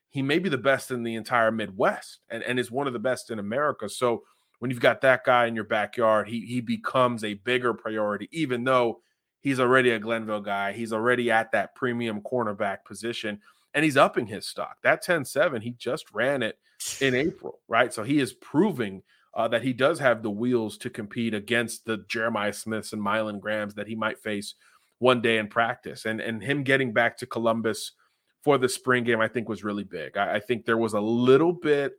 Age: 30-49